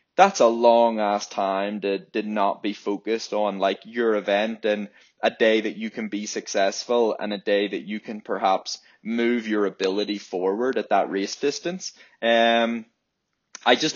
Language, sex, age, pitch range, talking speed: English, male, 20-39, 105-125 Hz, 170 wpm